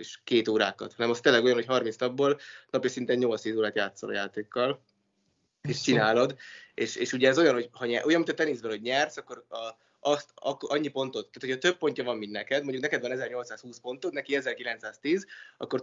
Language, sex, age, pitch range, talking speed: Hungarian, male, 20-39, 120-140 Hz, 210 wpm